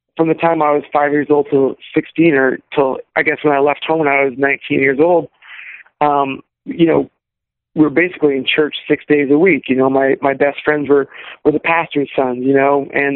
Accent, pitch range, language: American, 140-165 Hz, English